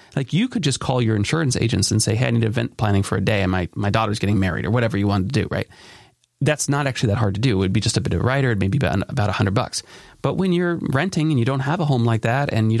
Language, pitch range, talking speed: English, 115-145 Hz, 325 wpm